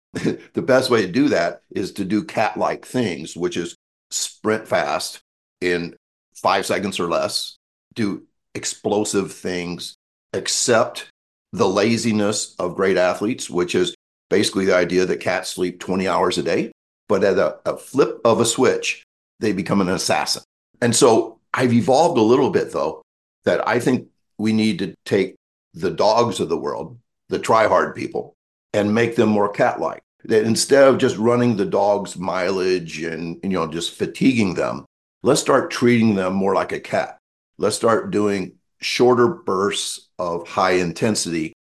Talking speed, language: 160 wpm, English